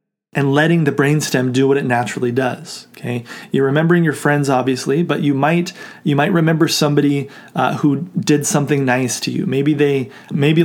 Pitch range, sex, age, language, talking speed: 135-170 Hz, male, 30-49, English, 180 wpm